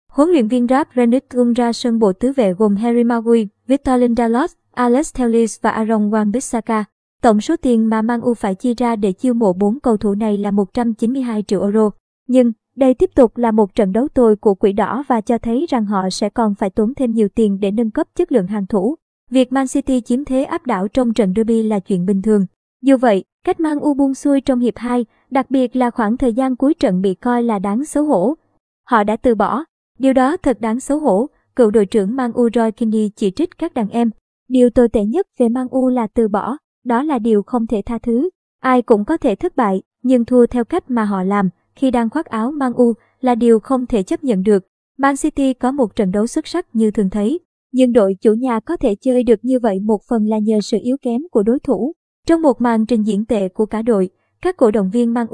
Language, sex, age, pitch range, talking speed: Vietnamese, male, 20-39, 220-260 Hz, 240 wpm